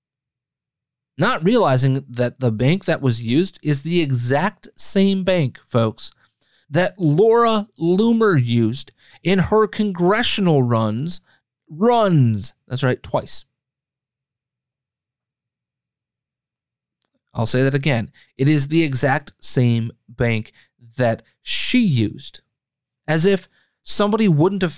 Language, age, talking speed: English, 30-49, 105 wpm